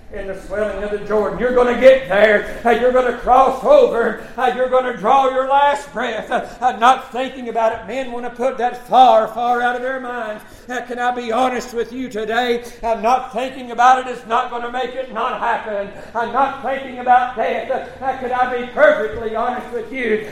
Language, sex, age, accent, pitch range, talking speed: English, male, 60-79, American, 235-260 Hz, 200 wpm